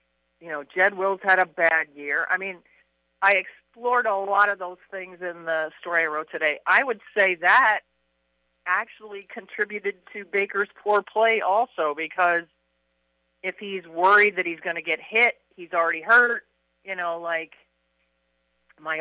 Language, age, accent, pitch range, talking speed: English, 50-69, American, 150-200 Hz, 160 wpm